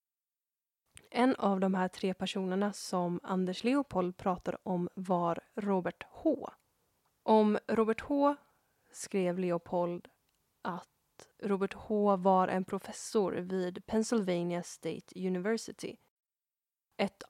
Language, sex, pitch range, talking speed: Swedish, female, 180-210 Hz, 105 wpm